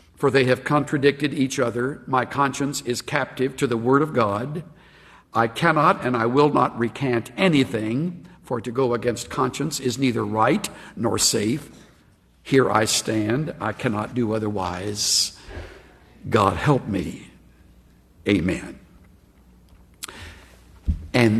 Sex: male